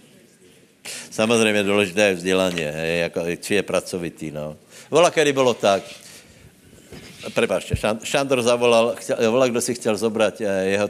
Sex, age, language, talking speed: male, 60-79, Slovak, 115 wpm